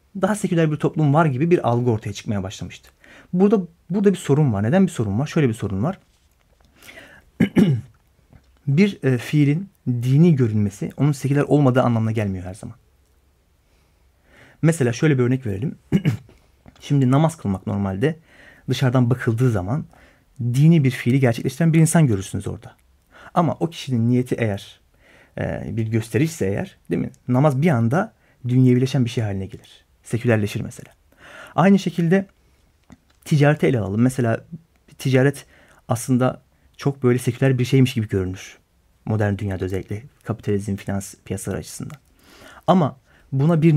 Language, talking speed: Turkish, 140 wpm